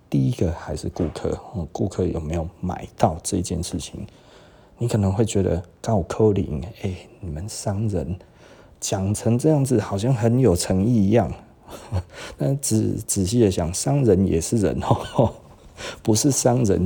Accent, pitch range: native, 85-110 Hz